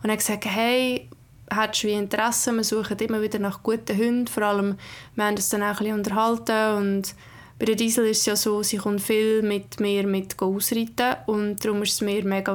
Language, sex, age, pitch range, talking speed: German, female, 20-39, 205-225 Hz, 215 wpm